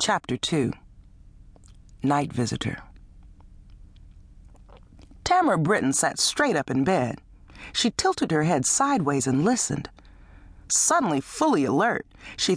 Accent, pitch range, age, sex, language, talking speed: American, 135-215 Hz, 40-59, female, English, 105 wpm